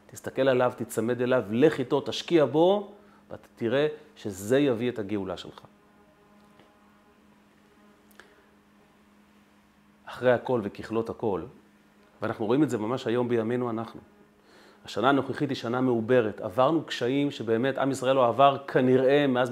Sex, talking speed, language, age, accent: male, 125 wpm, Hebrew, 30-49, native